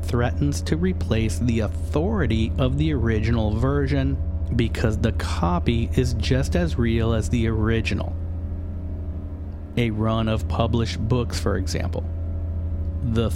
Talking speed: 120 wpm